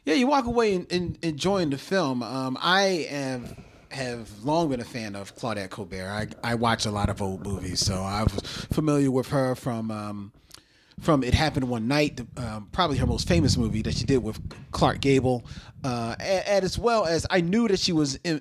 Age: 30-49